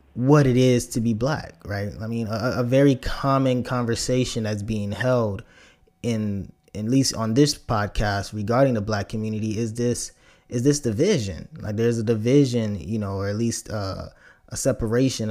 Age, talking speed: 20-39, 175 wpm